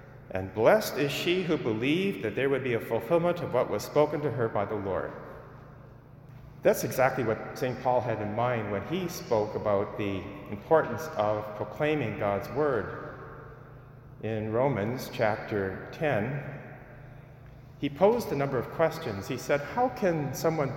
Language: English